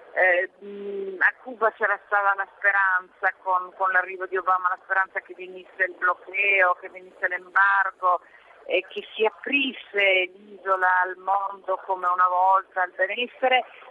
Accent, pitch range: native, 185-230 Hz